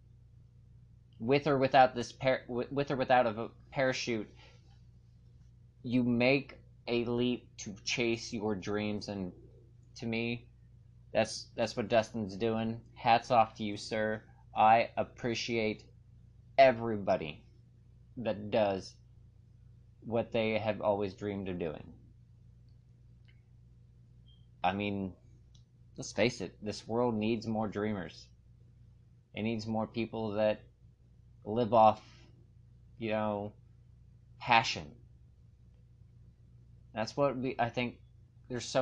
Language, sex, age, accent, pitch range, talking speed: English, male, 30-49, American, 110-120 Hz, 105 wpm